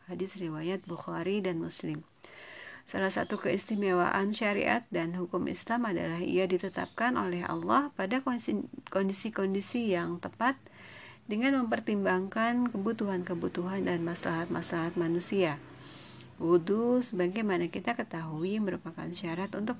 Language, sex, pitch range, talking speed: Indonesian, female, 165-210 Hz, 105 wpm